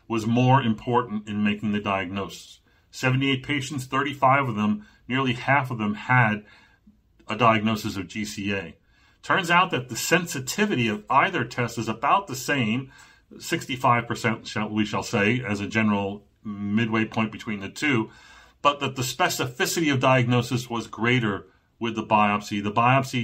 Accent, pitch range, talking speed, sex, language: American, 105-130 Hz, 150 wpm, male, English